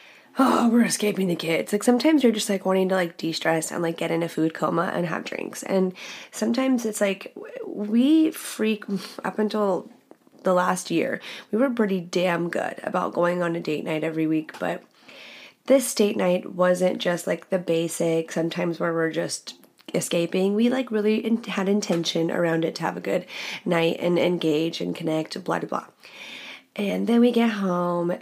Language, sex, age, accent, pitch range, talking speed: English, female, 20-39, American, 175-230 Hz, 185 wpm